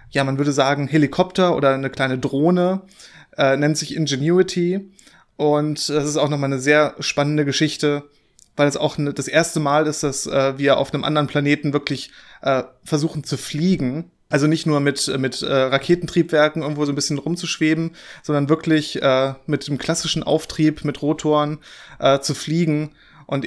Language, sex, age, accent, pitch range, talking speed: German, male, 30-49, German, 135-155 Hz, 170 wpm